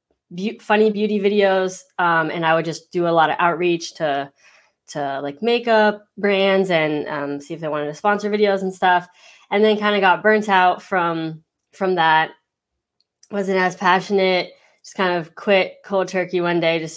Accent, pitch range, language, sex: American, 165-210 Hz, English, female